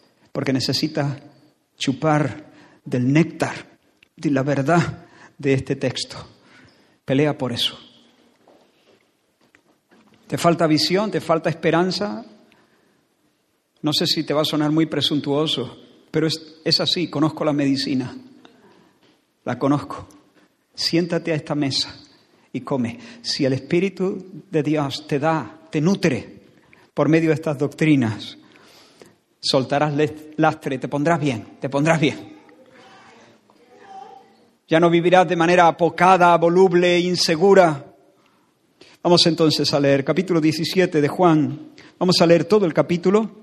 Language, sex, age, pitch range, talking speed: Spanish, male, 50-69, 145-170 Hz, 120 wpm